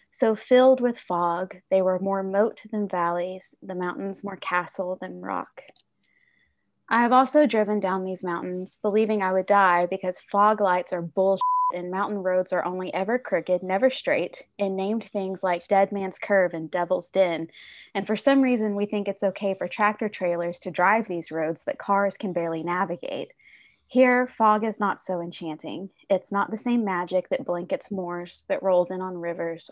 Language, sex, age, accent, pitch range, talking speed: English, female, 20-39, American, 180-215 Hz, 180 wpm